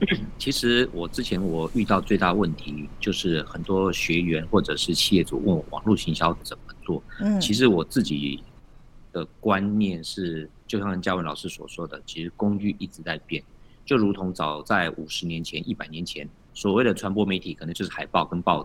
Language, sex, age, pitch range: Chinese, male, 50-69, 85-115 Hz